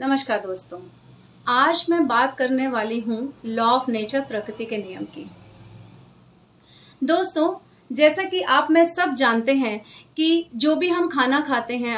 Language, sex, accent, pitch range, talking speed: Hindi, female, native, 230-320 Hz, 150 wpm